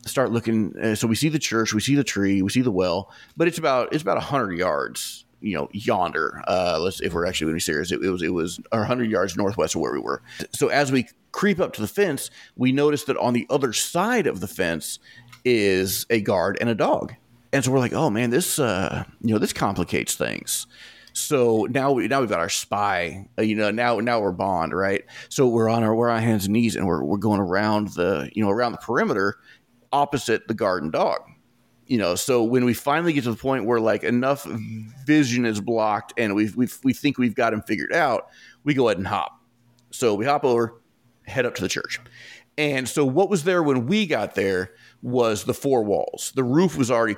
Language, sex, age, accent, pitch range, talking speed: English, male, 30-49, American, 110-135 Hz, 230 wpm